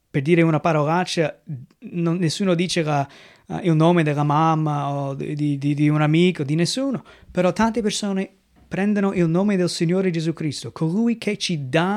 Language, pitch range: Italian, 150-185 Hz